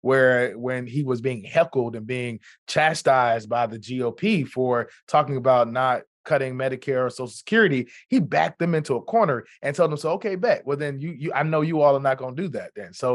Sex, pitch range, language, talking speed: male, 125-150 Hz, English, 225 wpm